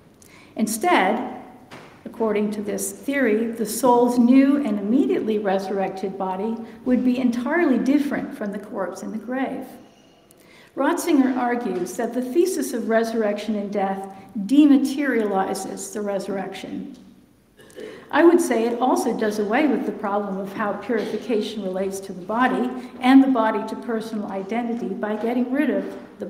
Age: 50-69